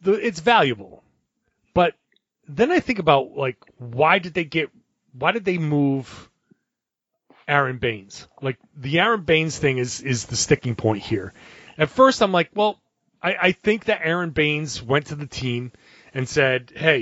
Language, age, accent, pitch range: English, 30-49, American, 125-170 Hz